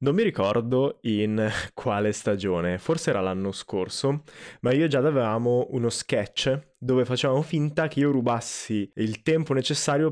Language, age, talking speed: Italian, 20-39, 150 wpm